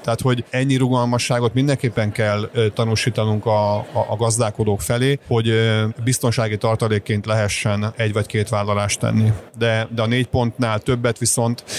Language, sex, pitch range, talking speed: Hungarian, male, 105-120 Hz, 135 wpm